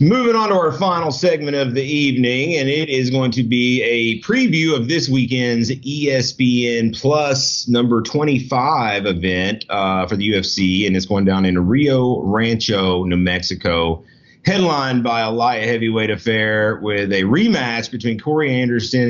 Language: English